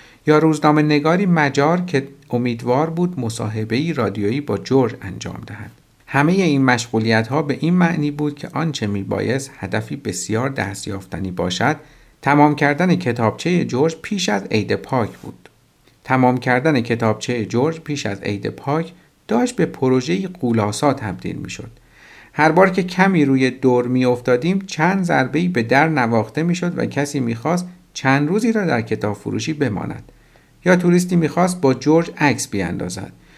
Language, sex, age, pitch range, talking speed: Persian, male, 50-69, 115-160 Hz, 145 wpm